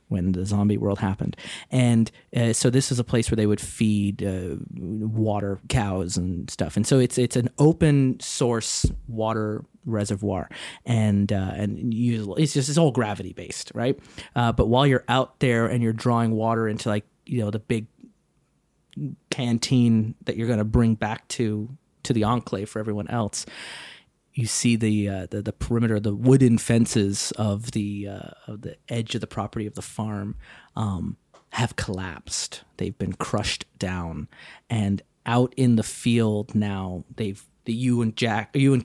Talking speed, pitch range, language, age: 175 wpm, 105-120 Hz, English, 30-49